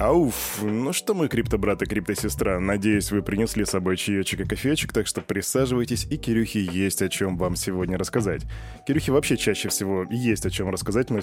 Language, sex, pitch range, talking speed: Russian, male, 95-115 Hz, 205 wpm